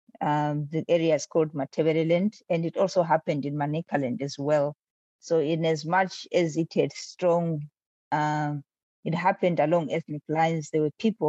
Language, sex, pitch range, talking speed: English, female, 150-170 Hz, 165 wpm